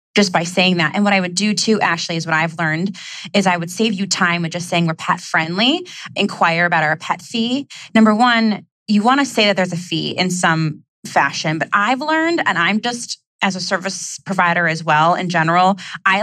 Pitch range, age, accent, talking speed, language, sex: 165-200 Hz, 20-39, American, 220 wpm, English, female